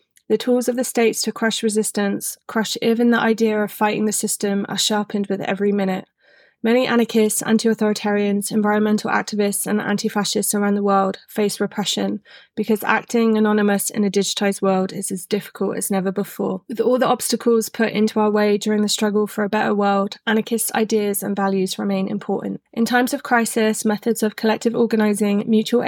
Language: English